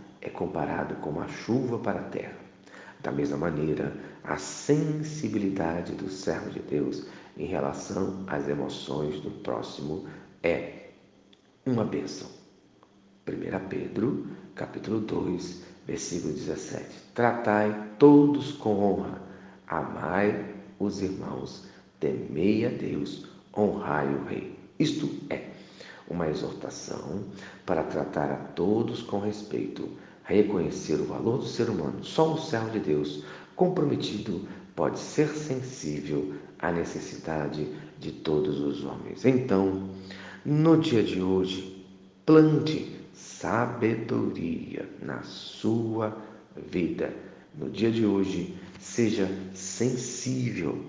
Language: Portuguese